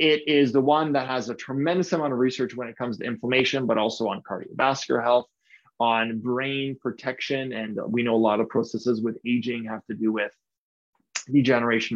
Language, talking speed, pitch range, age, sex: English, 190 wpm, 115-140 Hz, 20-39, male